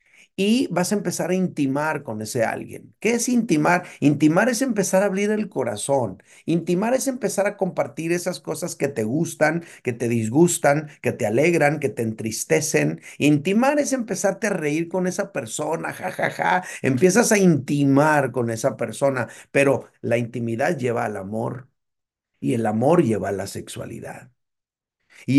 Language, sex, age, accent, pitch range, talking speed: Spanish, male, 50-69, Mexican, 140-190 Hz, 155 wpm